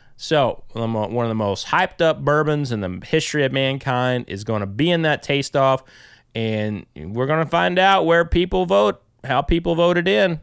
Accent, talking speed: American, 195 wpm